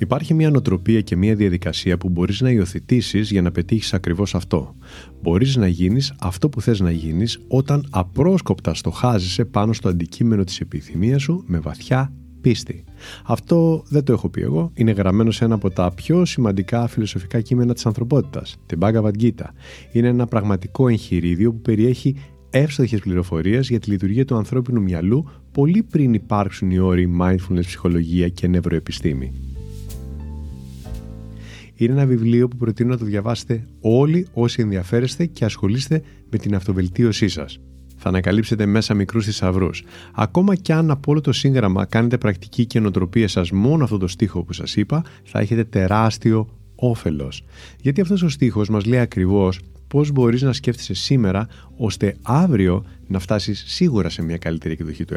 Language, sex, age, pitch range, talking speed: Greek, male, 30-49, 90-120 Hz, 160 wpm